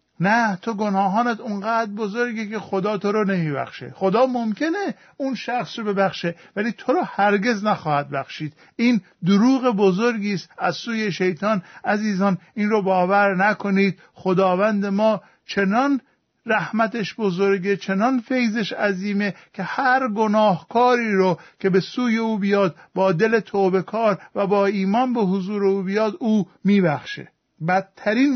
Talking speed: 135 wpm